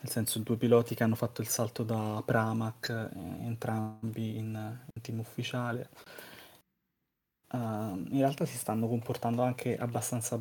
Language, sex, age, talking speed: Italian, male, 20-39, 135 wpm